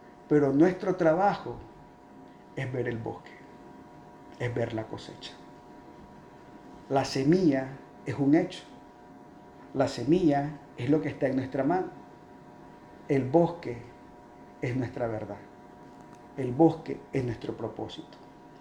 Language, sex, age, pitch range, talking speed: Spanish, male, 50-69, 135-185 Hz, 115 wpm